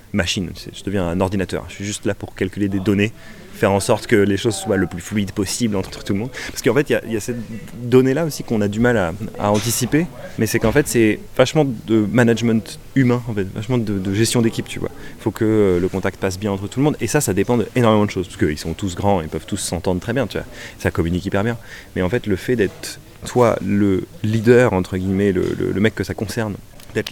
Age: 30-49